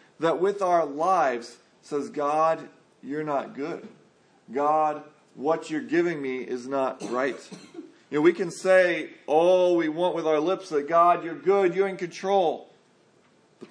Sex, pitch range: male, 140-175 Hz